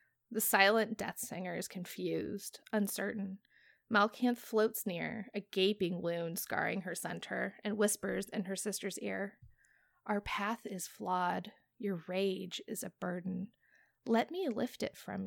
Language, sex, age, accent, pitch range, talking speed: English, female, 20-39, American, 185-215 Hz, 140 wpm